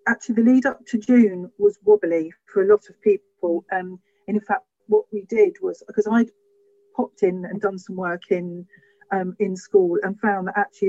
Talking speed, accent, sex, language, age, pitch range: 205 wpm, British, female, English, 40-59, 180-215 Hz